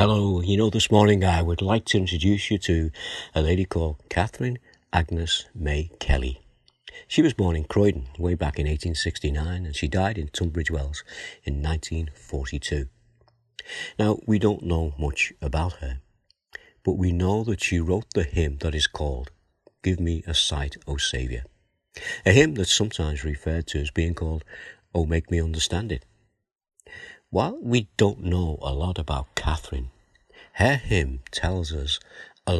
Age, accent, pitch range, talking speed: 50-69, British, 75-95 Hz, 160 wpm